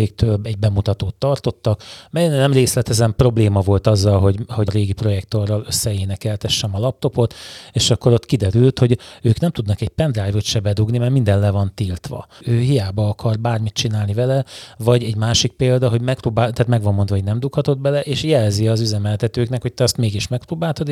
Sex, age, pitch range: male, 30-49, 105-125 Hz